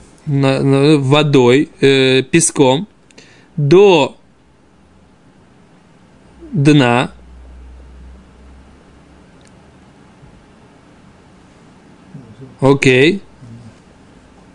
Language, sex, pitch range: Russian, male, 135-185 Hz